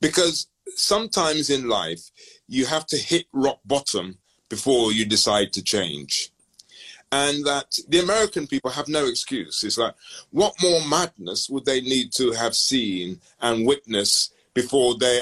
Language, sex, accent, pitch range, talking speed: English, male, British, 120-170 Hz, 150 wpm